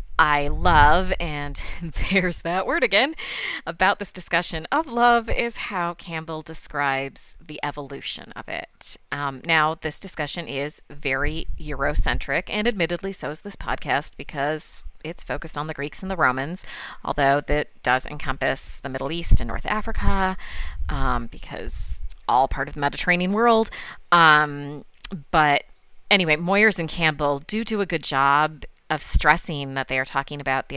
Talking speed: 155 wpm